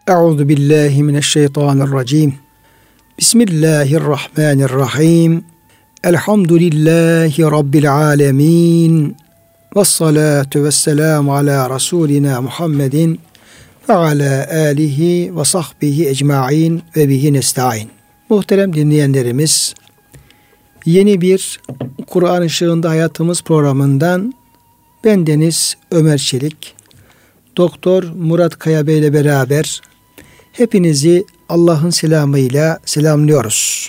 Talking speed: 70 wpm